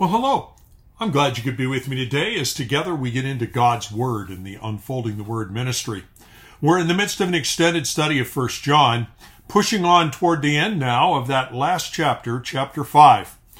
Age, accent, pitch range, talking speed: 50-69, American, 120-165 Hz, 205 wpm